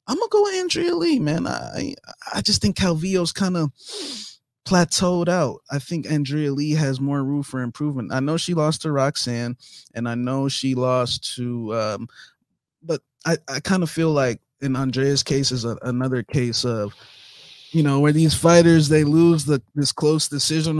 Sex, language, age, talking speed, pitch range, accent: male, English, 20-39, 190 wpm, 120-150 Hz, American